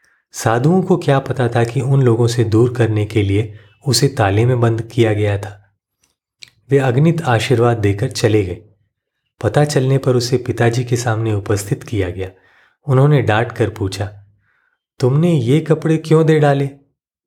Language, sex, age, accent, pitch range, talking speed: Hindi, male, 30-49, native, 105-130 Hz, 160 wpm